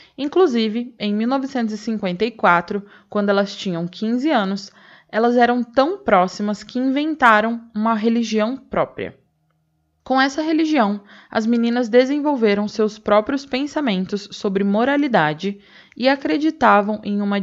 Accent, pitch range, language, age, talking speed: Brazilian, 205-255 Hz, Portuguese, 20-39, 110 wpm